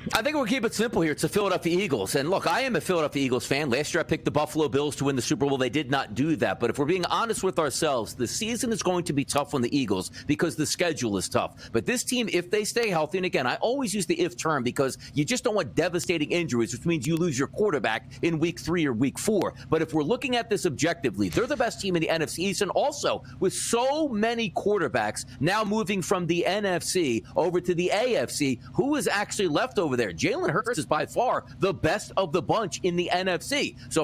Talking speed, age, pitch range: 250 wpm, 40-59, 145-205 Hz